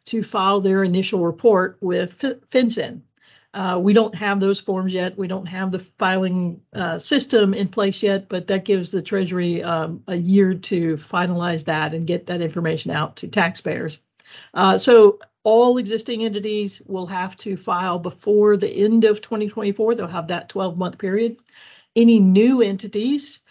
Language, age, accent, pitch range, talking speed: English, 50-69, American, 185-215 Hz, 165 wpm